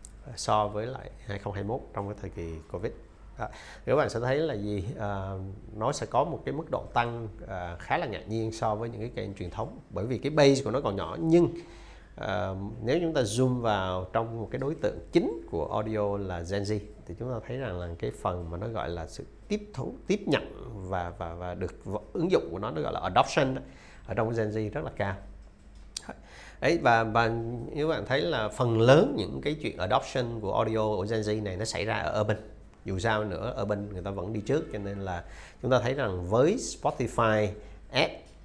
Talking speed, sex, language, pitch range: 220 wpm, male, Vietnamese, 95-115 Hz